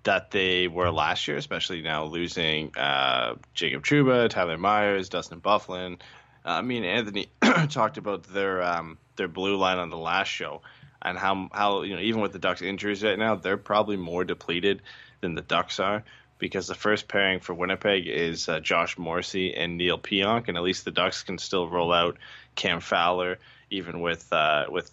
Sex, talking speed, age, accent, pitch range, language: male, 190 wpm, 20-39, American, 90-110 Hz, English